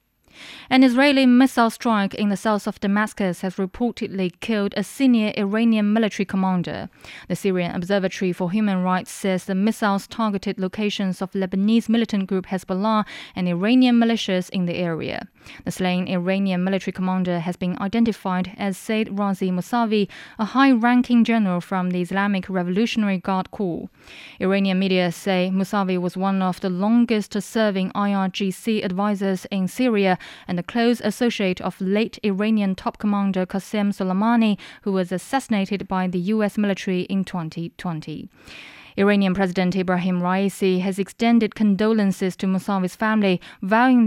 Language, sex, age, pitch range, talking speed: English, female, 20-39, 185-215 Hz, 145 wpm